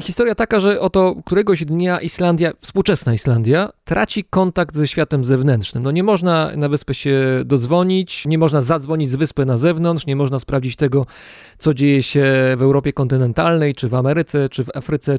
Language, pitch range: Polish, 140-185 Hz